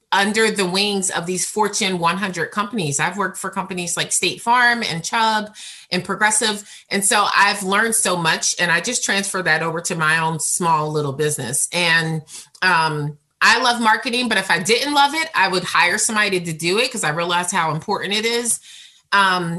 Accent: American